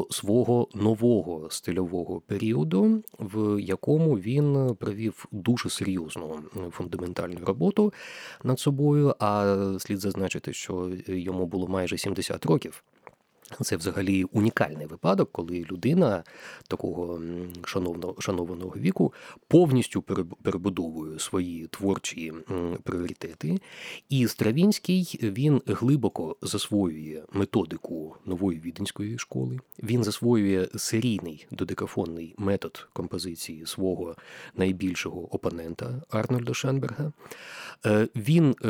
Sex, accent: male, native